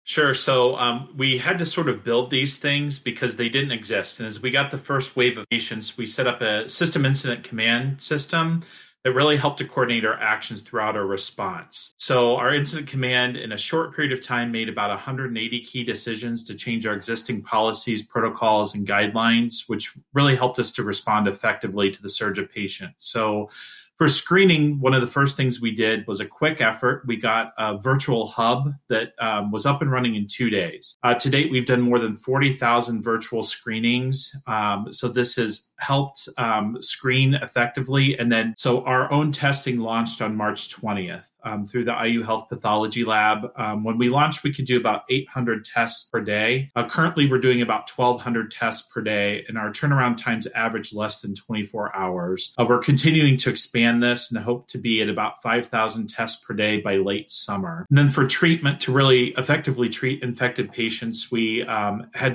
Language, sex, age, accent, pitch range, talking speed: English, male, 30-49, American, 115-135 Hz, 195 wpm